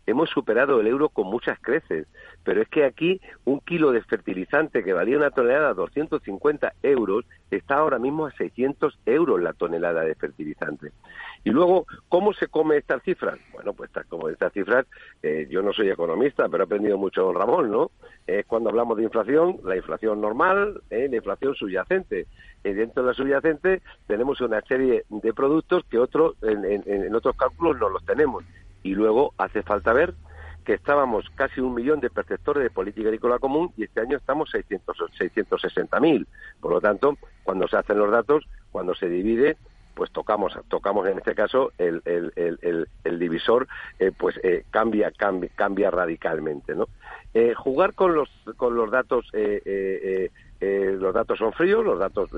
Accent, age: Spanish, 60-79